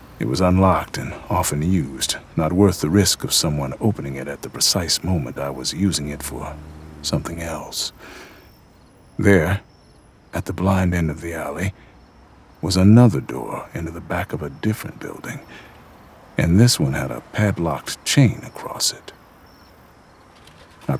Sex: male